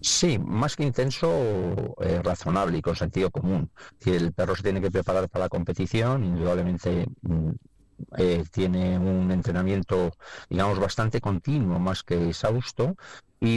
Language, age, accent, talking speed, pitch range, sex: Spanish, 40-59, Spanish, 140 wpm, 85-100 Hz, male